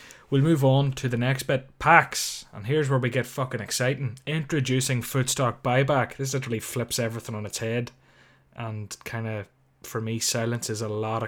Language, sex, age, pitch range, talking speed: English, male, 20-39, 115-135 Hz, 185 wpm